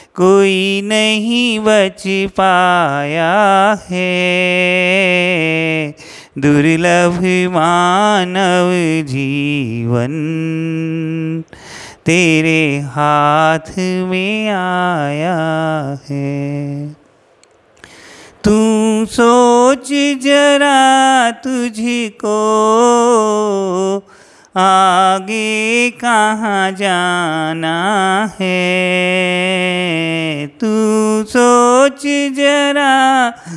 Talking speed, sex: 45 wpm, male